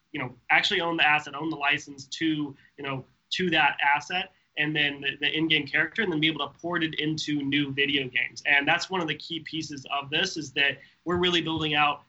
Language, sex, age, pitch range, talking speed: English, male, 20-39, 140-160 Hz, 235 wpm